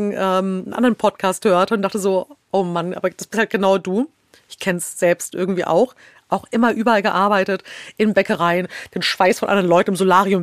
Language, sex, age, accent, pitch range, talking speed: German, female, 40-59, German, 190-235 Hz, 195 wpm